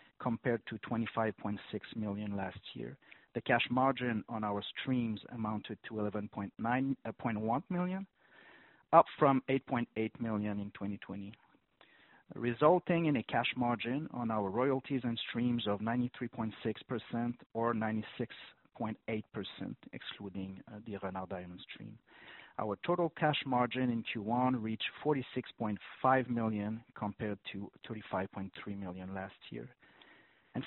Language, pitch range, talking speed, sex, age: English, 110-135 Hz, 115 wpm, male, 40-59